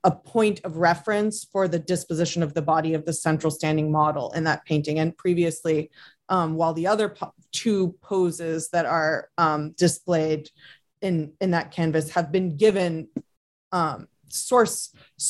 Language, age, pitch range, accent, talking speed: English, 30-49, 160-185 Hz, American, 155 wpm